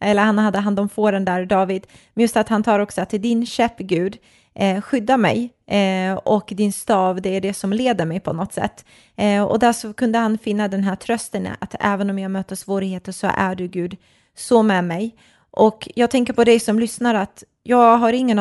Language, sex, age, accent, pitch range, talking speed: Swedish, female, 20-39, native, 185-210 Hz, 220 wpm